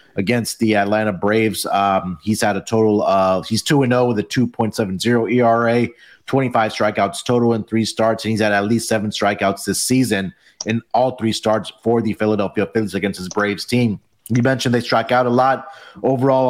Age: 30-49